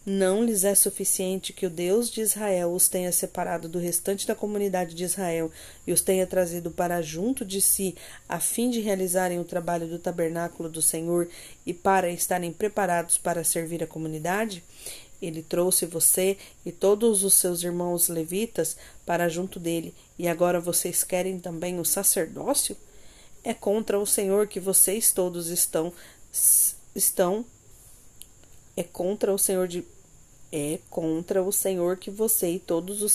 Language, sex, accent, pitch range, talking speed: Portuguese, female, Brazilian, 170-195 Hz, 155 wpm